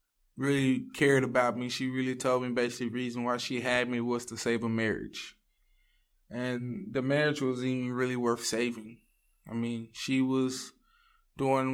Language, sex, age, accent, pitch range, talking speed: English, male, 20-39, American, 120-130 Hz, 170 wpm